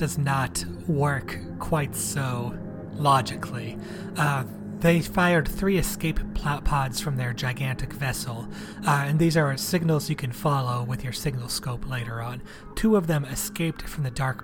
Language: English